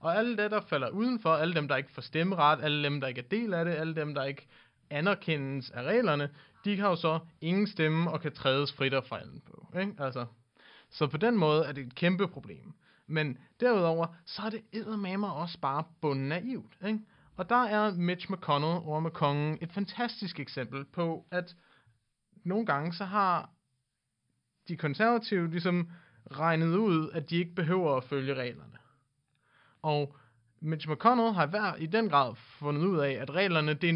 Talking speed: 185 wpm